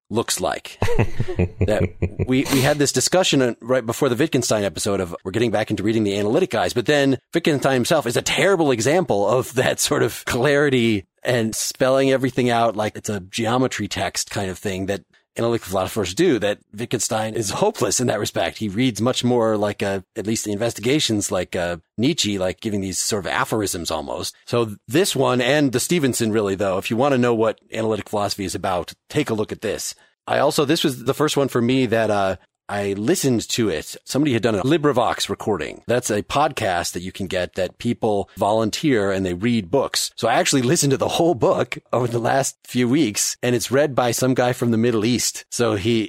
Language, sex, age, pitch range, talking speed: English, male, 30-49, 105-130 Hz, 210 wpm